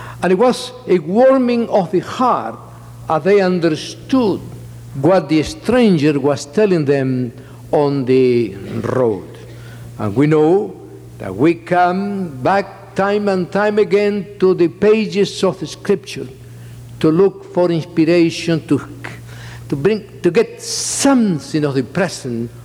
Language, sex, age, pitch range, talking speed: English, male, 60-79, 120-185 Hz, 130 wpm